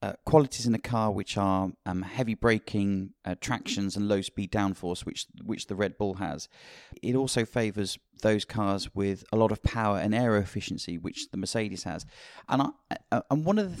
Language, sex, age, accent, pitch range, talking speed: English, male, 30-49, British, 100-120 Hz, 200 wpm